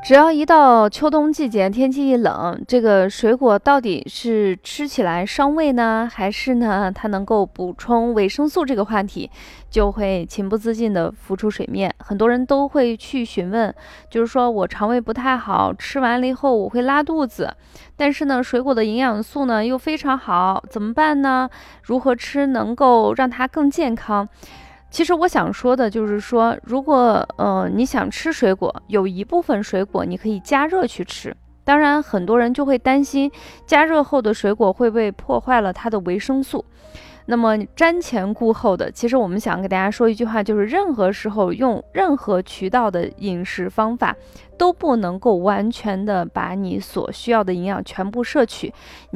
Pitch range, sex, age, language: 205-270 Hz, female, 20-39, Chinese